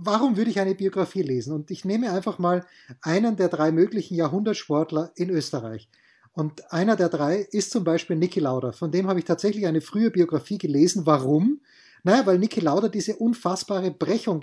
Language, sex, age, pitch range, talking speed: German, male, 30-49, 160-200 Hz, 185 wpm